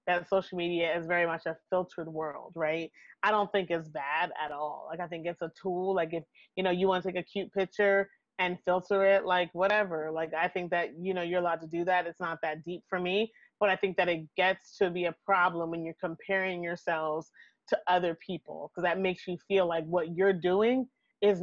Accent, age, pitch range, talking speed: American, 30-49, 170-195 Hz, 230 wpm